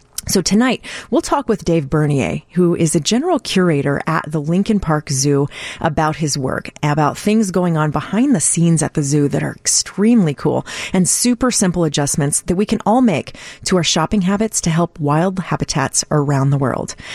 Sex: female